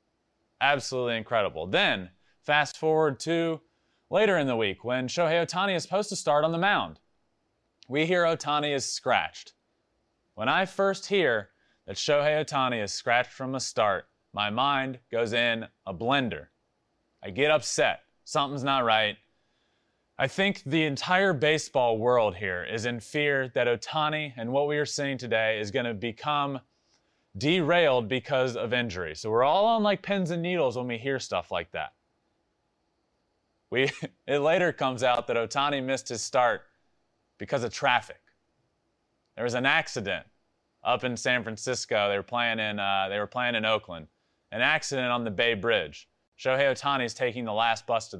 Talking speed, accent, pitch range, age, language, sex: 165 wpm, American, 115-150 Hz, 30-49, English, male